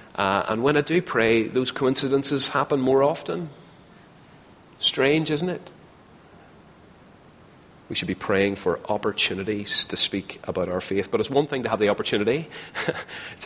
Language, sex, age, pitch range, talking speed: English, male, 30-49, 95-120 Hz, 150 wpm